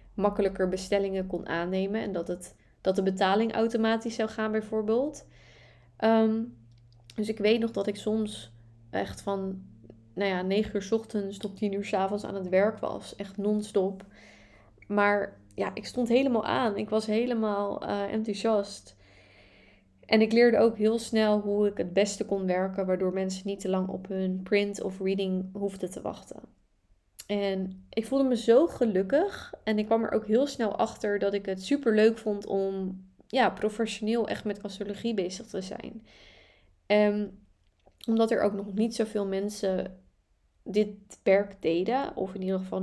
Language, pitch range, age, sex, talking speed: Dutch, 190-215 Hz, 20-39, female, 165 wpm